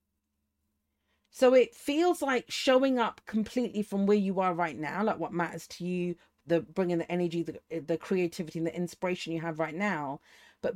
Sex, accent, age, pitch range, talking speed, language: female, British, 40-59, 160-205 Hz, 185 wpm, English